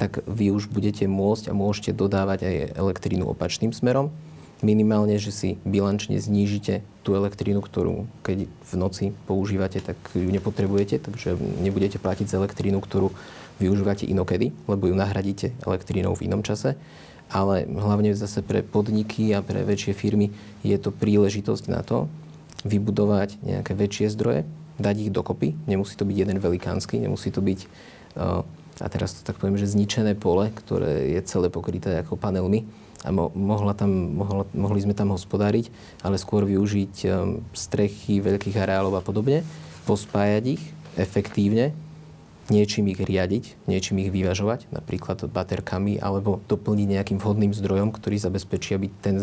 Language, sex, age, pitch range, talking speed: Slovak, male, 30-49, 95-105 Hz, 145 wpm